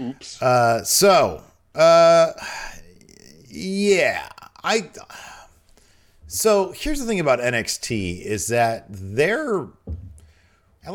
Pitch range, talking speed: 95-135 Hz, 80 wpm